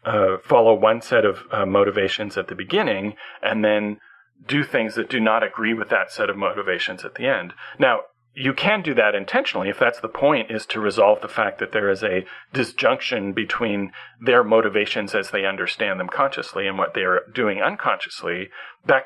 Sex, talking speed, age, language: male, 190 wpm, 40-59, English